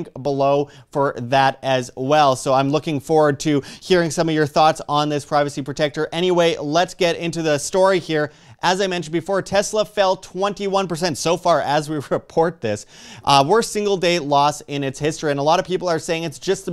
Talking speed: 205 wpm